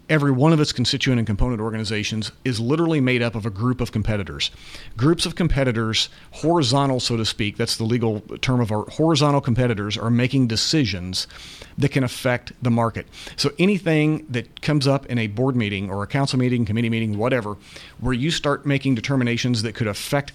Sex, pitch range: male, 110-135 Hz